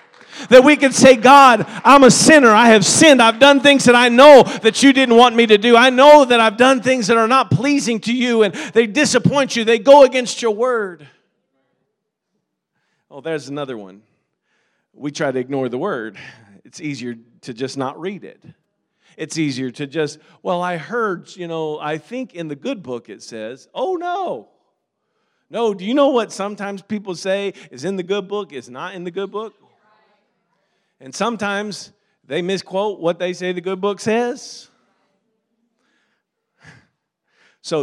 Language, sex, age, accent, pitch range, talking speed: English, male, 40-59, American, 170-240 Hz, 180 wpm